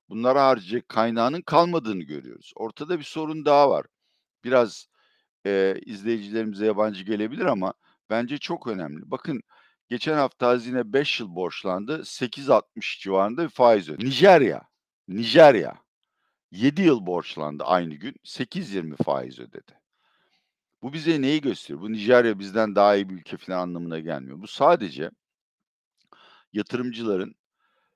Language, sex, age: Turkish, male, 60-79